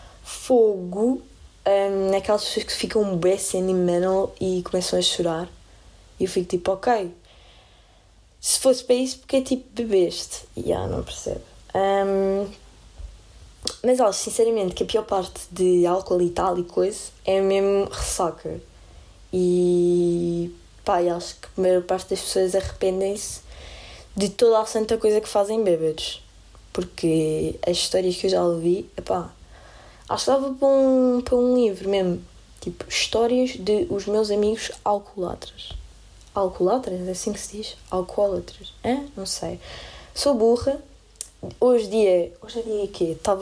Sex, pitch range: female, 175-215 Hz